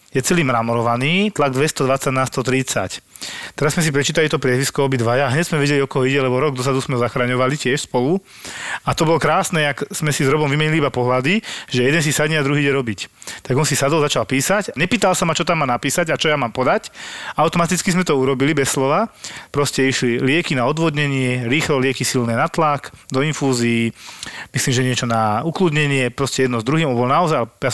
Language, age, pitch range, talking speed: Slovak, 30-49, 130-155 Hz, 205 wpm